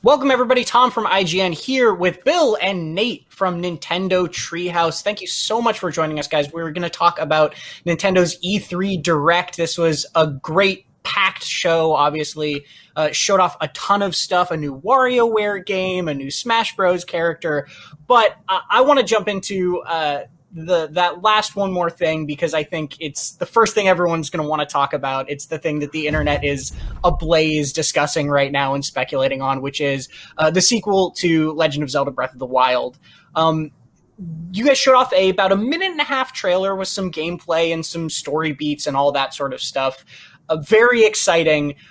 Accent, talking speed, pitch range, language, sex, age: American, 195 wpm, 150-195 Hz, English, male, 20-39